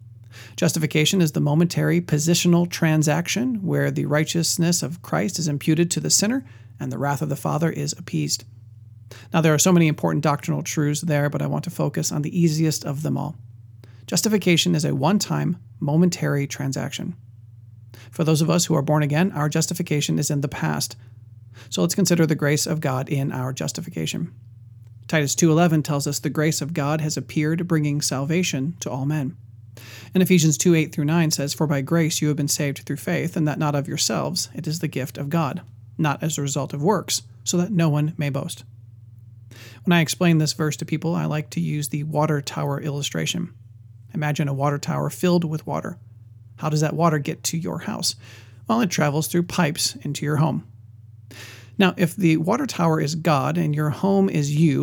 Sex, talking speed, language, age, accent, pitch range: male, 195 wpm, English, 40-59, American, 130-165 Hz